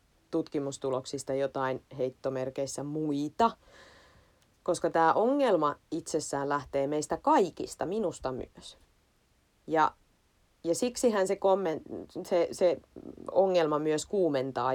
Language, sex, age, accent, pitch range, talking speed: Finnish, female, 30-49, native, 130-170 Hz, 95 wpm